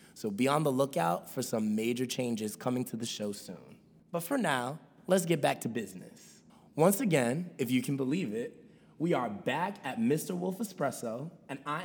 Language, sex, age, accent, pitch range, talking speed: English, male, 20-39, American, 125-175 Hz, 190 wpm